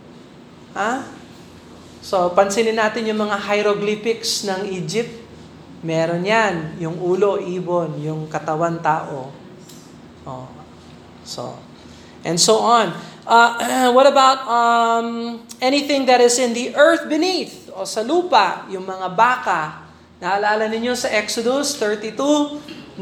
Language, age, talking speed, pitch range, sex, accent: Filipino, 20-39, 115 wpm, 175-230 Hz, male, native